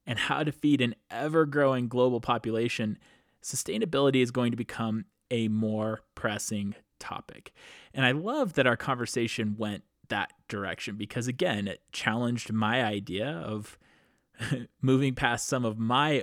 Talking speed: 140 wpm